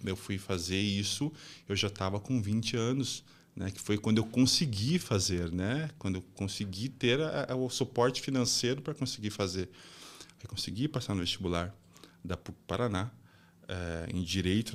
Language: Portuguese